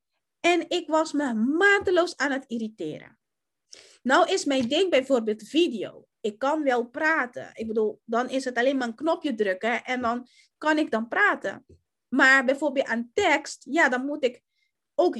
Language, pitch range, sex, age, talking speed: Dutch, 255-340 Hz, female, 20-39, 170 wpm